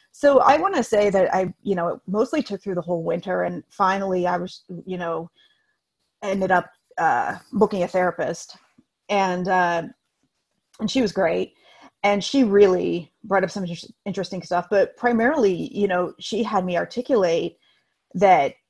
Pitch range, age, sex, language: 185-250 Hz, 30-49, female, English